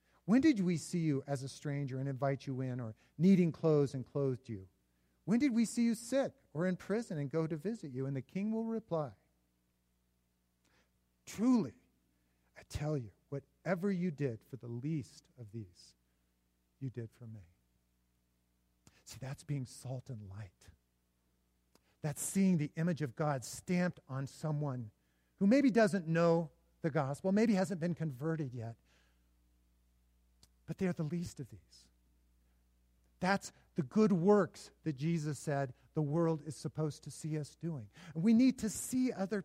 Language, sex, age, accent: English, male, 50-69, American